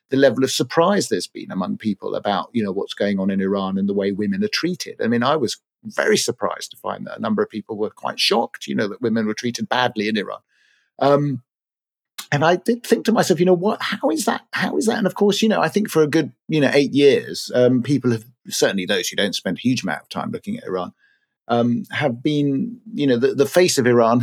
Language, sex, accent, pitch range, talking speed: English, male, British, 120-185 Hz, 255 wpm